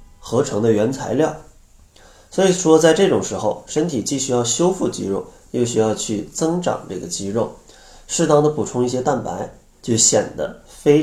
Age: 30-49